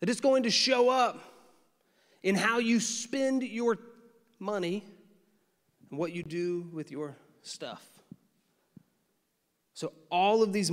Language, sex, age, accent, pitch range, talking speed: English, male, 30-49, American, 155-205 Hz, 130 wpm